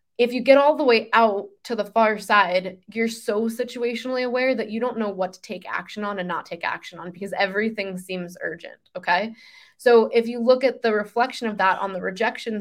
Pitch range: 190-235 Hz